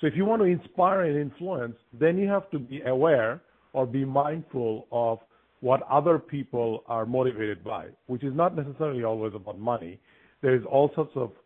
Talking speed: 190 wpm